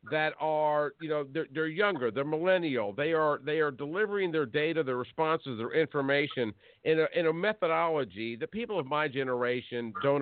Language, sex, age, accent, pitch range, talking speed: English, male, 50-69, American, 140-200 Hz, 180 wpm